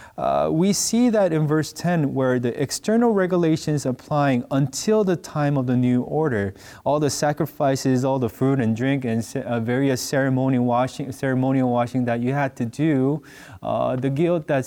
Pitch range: 120-150 Hz